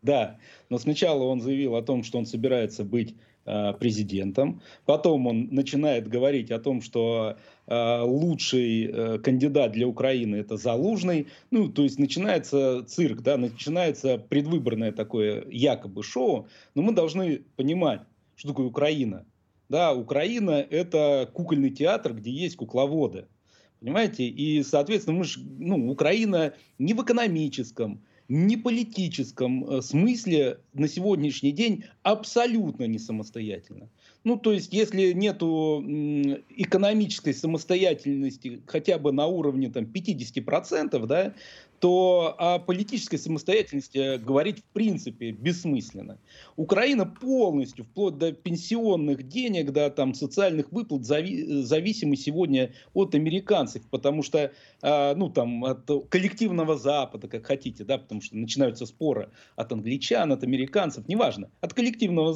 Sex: male